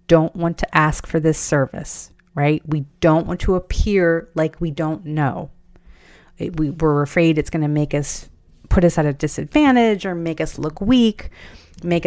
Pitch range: 145-180 Hz